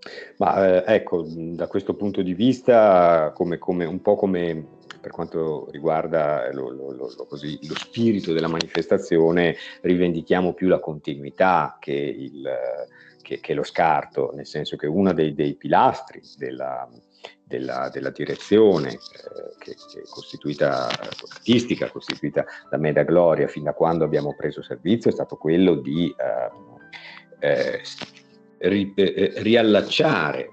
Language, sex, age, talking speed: Italian, male, 50-69, 140 wpm